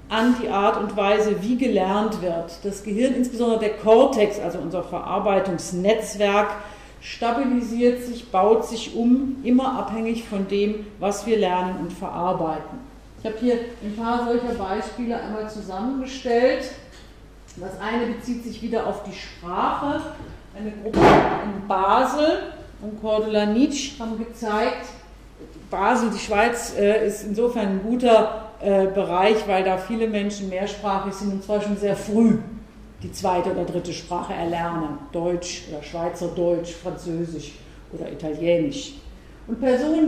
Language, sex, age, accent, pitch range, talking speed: German, female, 40-59, German, 195-245 Hz, 135 wpm